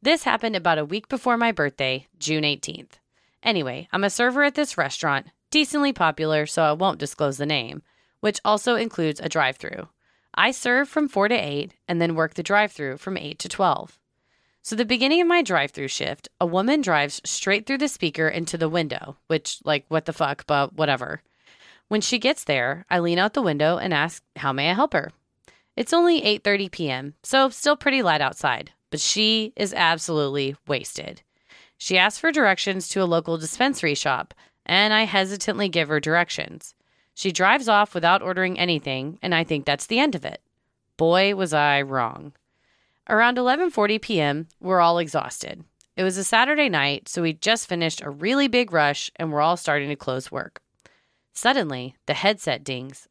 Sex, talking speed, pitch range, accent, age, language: female, 190 wpm, 145-210 Hz, American, 30-49, English